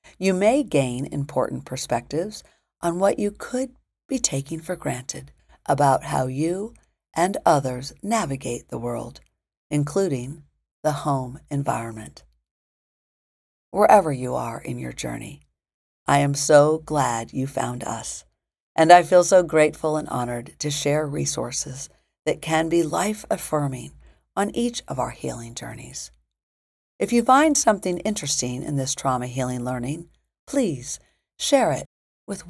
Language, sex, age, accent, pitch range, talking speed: English, female, 50-69, American, 125-180 Hz, 135 wpm